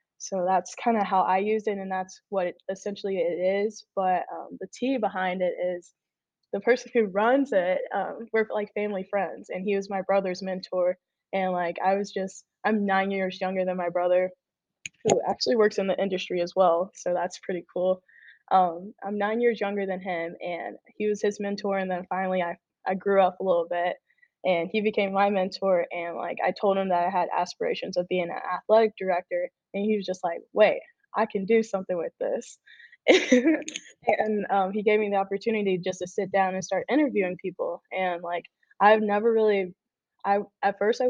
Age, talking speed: 10-29, 200 wpm